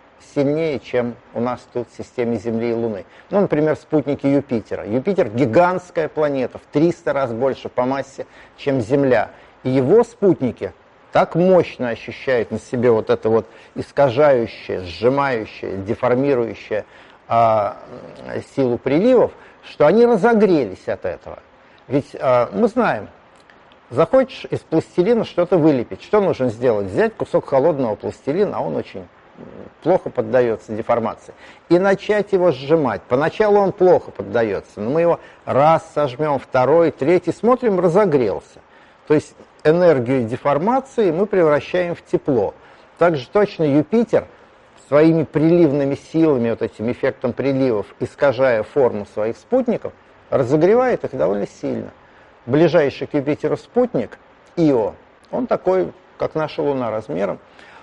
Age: 50-69